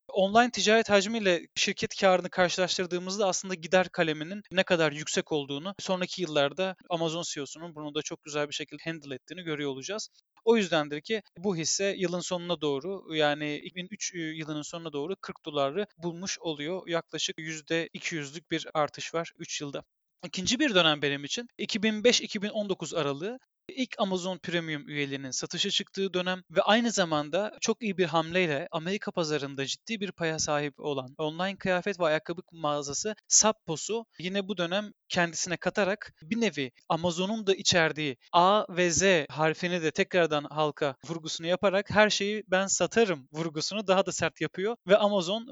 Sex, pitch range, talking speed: male, 155-200 Hz, 150 wpm